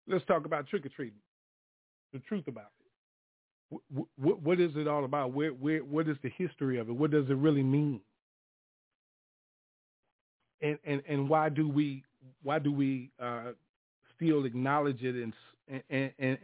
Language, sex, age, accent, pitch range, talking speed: English, male, 40-59, American, 130-150 Hz, 165 wpm